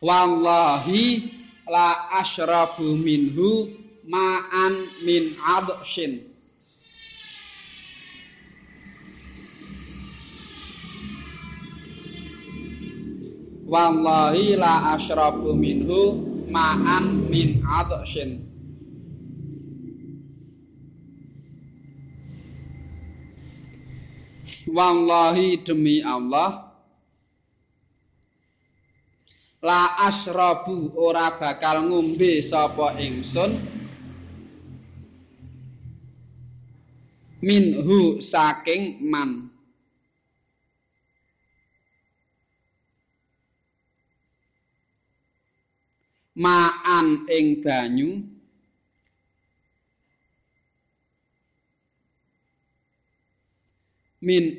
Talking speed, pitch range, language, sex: 35 wpm, 125-175 Hz, Indonesian, male